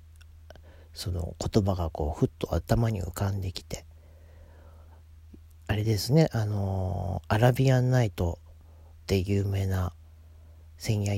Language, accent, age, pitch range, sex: Japanese, native, 40-59, 80-115 Hz, male